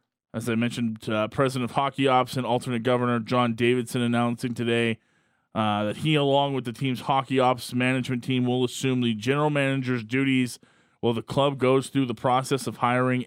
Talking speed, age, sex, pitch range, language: 185 wpm, 20-39, male, 120-145 Hz, English